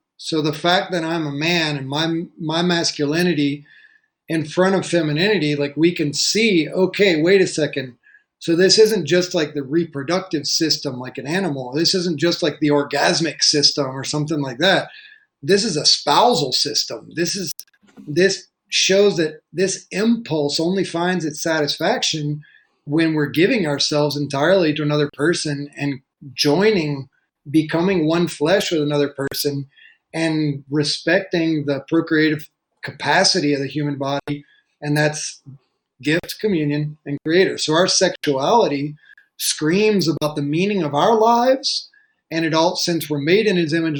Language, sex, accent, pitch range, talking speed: English, male, American, 150-185 Hz, 150 wpm